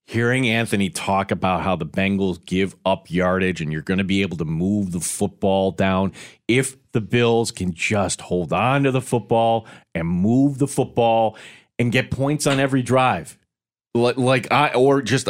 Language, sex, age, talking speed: English, male, 30-49, 175 wpm